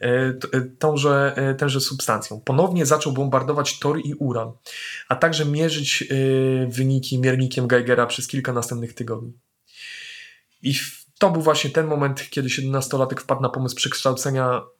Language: Polish